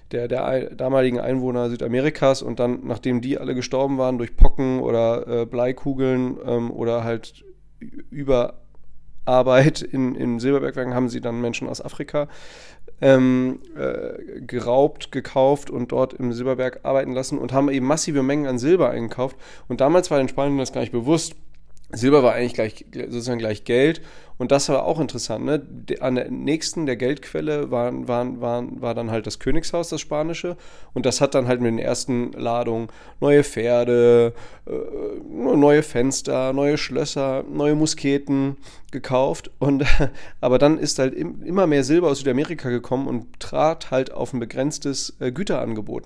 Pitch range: 120-145 Hz